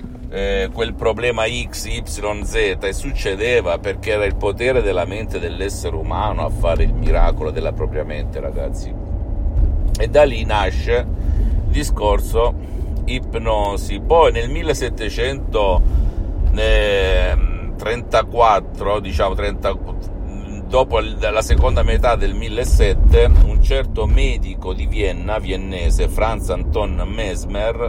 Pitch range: 75-100 Hz